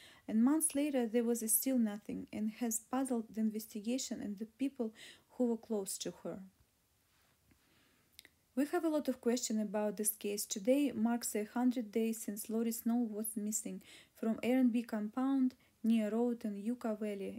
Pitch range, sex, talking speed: 215-245 Hz, female, 165 wpm